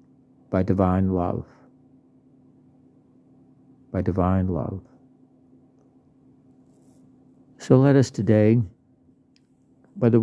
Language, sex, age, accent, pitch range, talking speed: English, male, 60-79, American, 100-130 Hz, 65 wpm